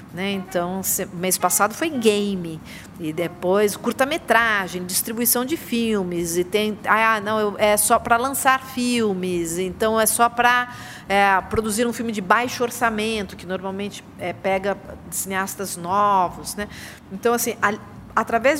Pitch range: 190-235 Hz